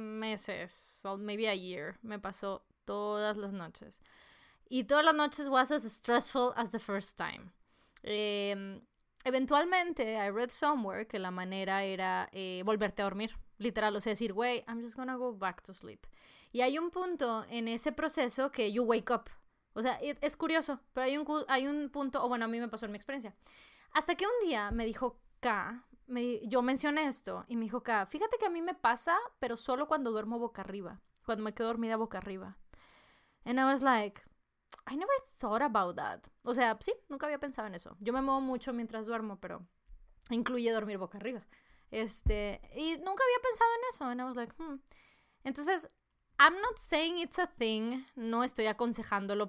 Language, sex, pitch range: Spanish, female, 210-275 Hz